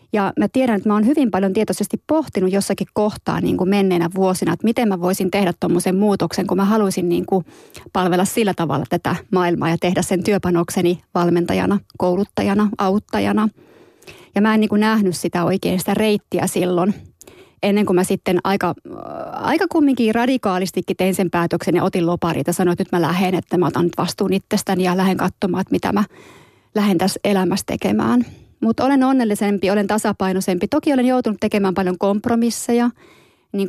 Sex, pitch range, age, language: female, 180-210 Hz, 30-49, Finnish